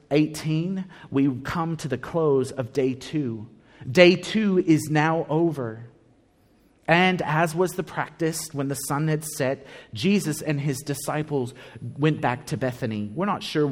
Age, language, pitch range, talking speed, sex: 30-49, English, 125-165 Hz, 155 wpm, male